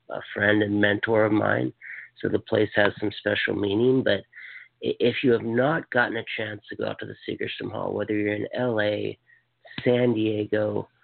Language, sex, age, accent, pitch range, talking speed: English, male, 50-69, American, 105-125 Hz, 190 wpm